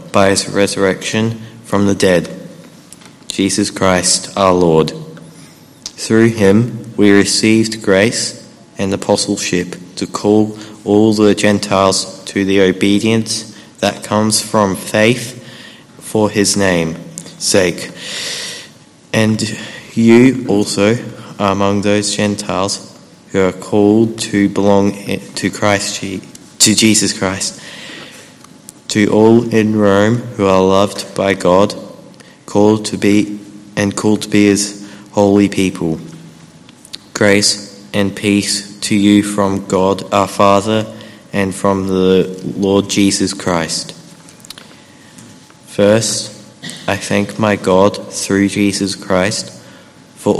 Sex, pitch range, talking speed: male, 95-105 Hz, 110 wpm